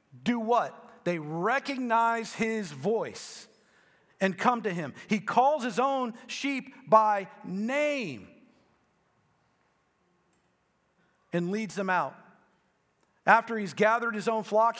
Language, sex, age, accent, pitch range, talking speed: English, male, 40-59, American, 150-210 Hz, 110 wpm